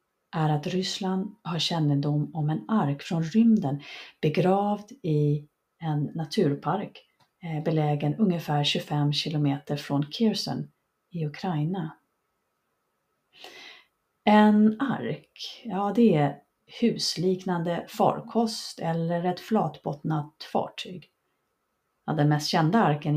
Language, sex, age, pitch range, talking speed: Swedish, female, 30-49, 150-190 Hz, 100 wpm